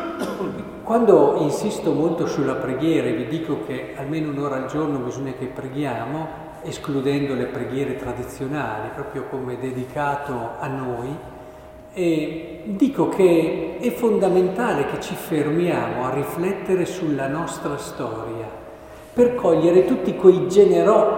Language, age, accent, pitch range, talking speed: Italian, 50-69, native, 145-195 Hz, 120 wpm